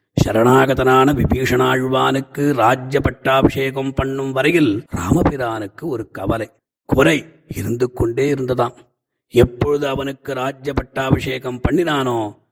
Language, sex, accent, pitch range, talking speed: Tamil, male, native, 115-135 Hz, 85 wpm